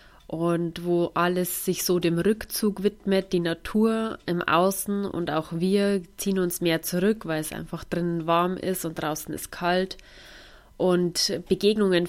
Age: 20-39